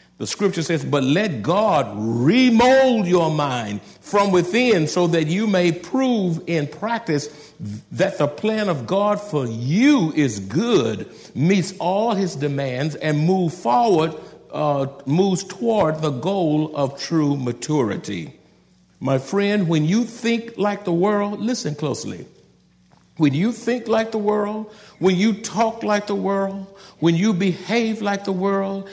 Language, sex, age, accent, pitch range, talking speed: English, male, 60-79, American, 155-210 Hz, 145 wpm